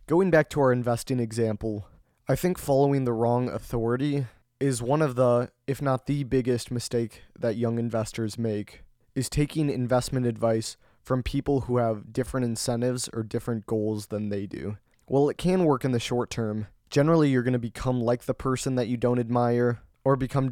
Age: 20-39